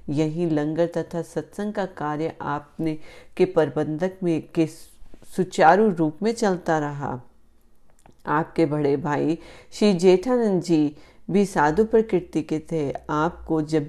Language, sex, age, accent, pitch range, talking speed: Hindi, female, 40-59, native, 150-185 Hz, 120 wpm